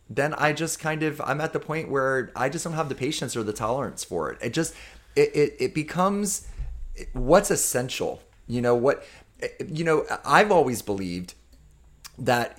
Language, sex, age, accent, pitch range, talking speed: English, male, 30-49, American, 100-150 Hz, 180 wpm